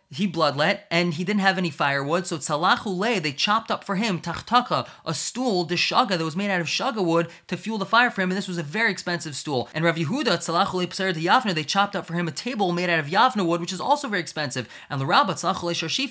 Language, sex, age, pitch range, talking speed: English, male, 20-39, 165-210 Hz, 225 wpm